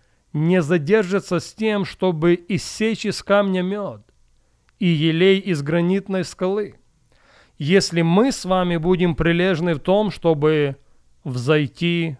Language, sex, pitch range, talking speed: English, male, 140-185 Hz, 120 wpm